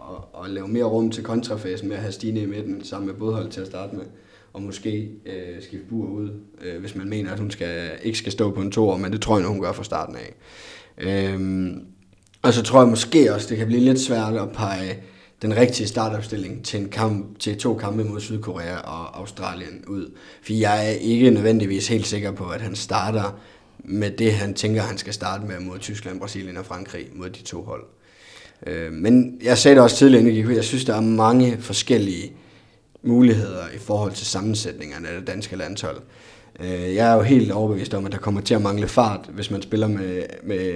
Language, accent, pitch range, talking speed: Danish, native, 95-110 Hz, 210 wpm